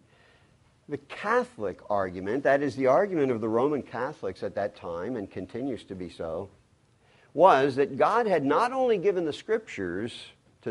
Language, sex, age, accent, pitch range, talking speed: English, male, 50-69, American, 110-135 Hz, 165 wpm